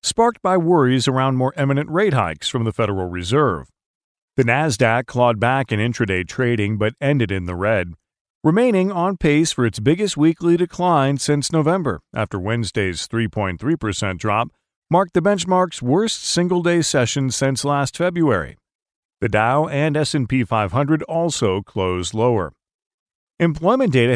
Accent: American